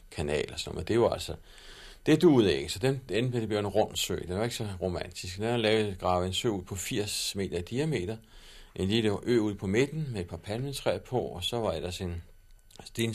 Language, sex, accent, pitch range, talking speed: Danish, male, native, 90-105 Hz, 225 wpm